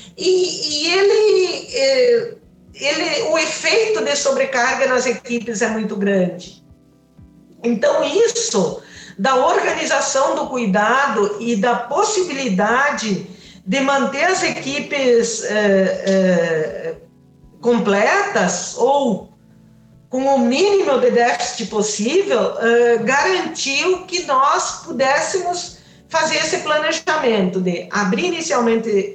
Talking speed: 85 wpm